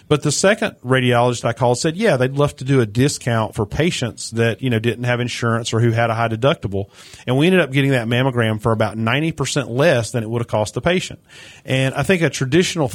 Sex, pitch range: male, 115-135 Hz